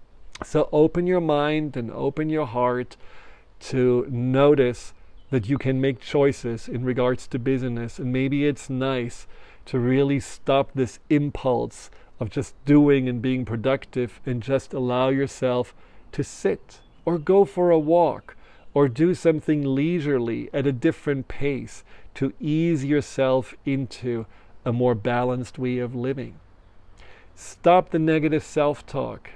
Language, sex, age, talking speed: English, male, 40-59, 135 wpm